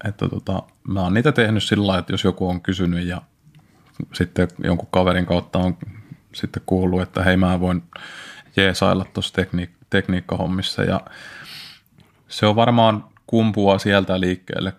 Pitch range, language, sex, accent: 90-105 Hz, Finnish, male, native